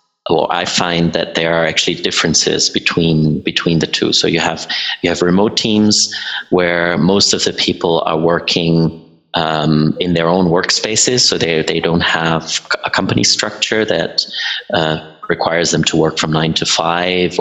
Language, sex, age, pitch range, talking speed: English, male, 30-49, 80-90 Hz, 170 wpm